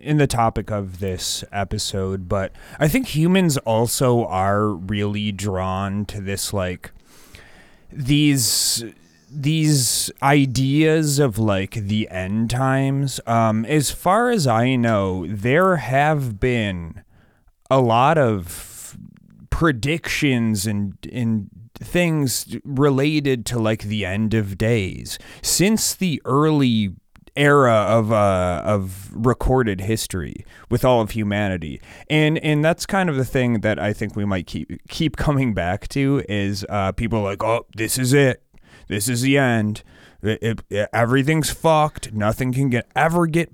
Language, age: English, 30-49